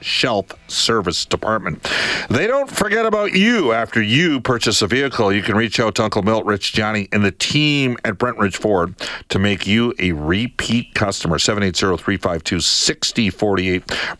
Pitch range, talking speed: 90-120 Hz, 150 wpm